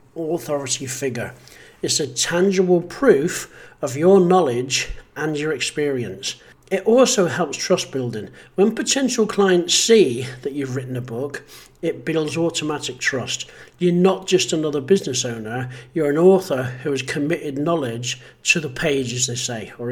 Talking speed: 150 wpm